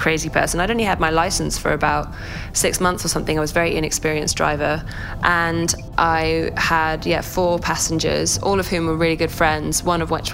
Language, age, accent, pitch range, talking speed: English, 20-39, British, 150-170 Hz, 210 wpm